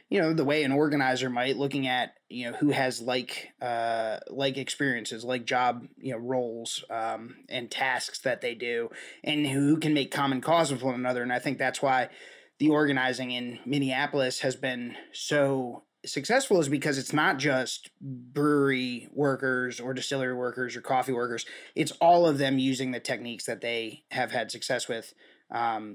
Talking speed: 180 wpm